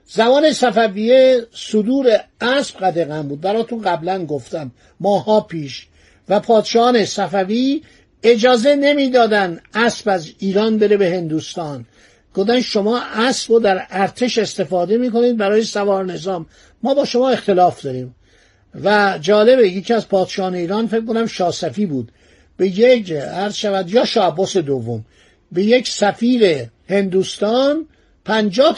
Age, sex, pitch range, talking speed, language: 50-69, male, 180-240 Hz, 125 wpm, Persian